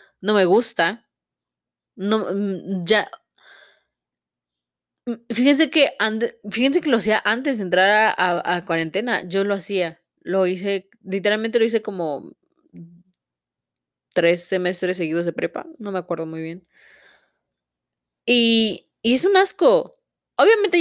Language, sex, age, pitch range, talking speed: Spanish, female, 20-39, 180-260 Hz, 125 wpm